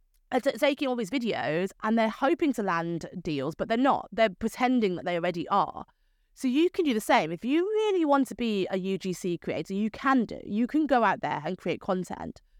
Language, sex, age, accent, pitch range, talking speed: English, female, 20-39, British, 185-255 Hz, 220 wpm